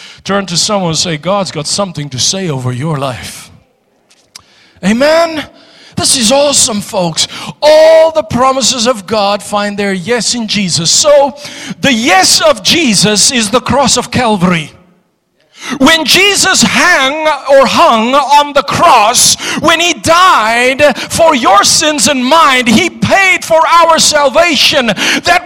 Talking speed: 140 wpm